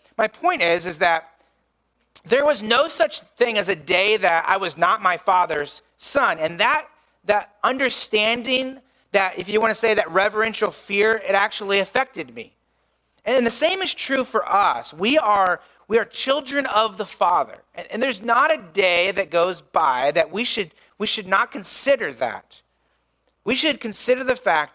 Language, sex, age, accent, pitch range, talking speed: English, male, 40-59, American, 180-255 Hz, 180 wpm